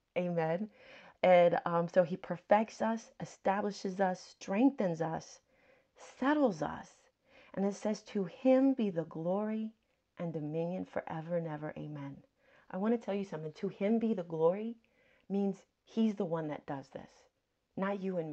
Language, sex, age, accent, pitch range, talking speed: English, female, 30-49, American, 180-245 Hz, 155 wpm